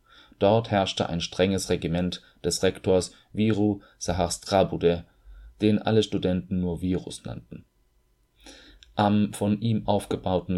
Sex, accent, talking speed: male, German, 110 wpm